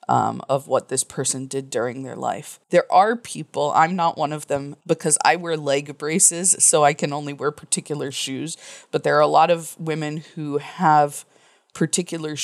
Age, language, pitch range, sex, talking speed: 20-39, English, 145-170 Hz, female, 190 wpm